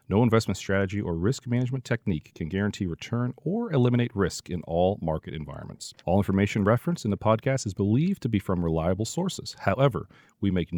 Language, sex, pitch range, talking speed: English, male, 95-135 Hz, 185 wpm